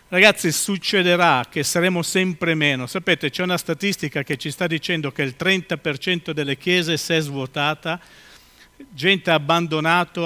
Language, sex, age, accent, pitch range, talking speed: Italian, male, 50-69, native, 145-180 Hz, 145 wpm